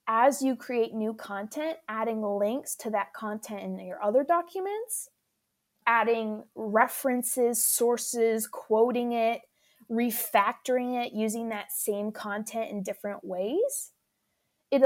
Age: 20-39